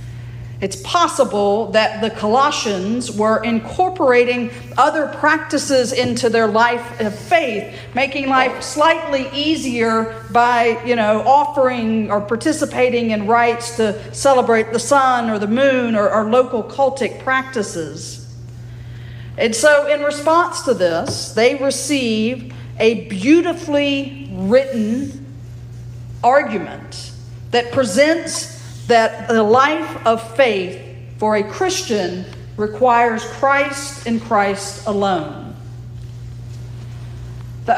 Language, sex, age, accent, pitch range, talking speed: English, female, 50-69, American, 165-260 Hz, 105 wpm